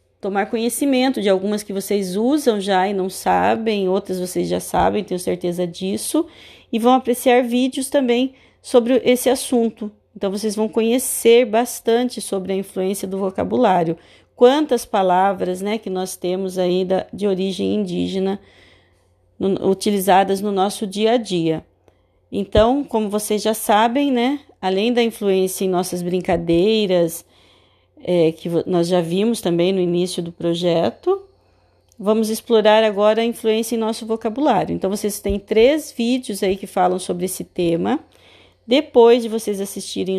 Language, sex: Portuguese, female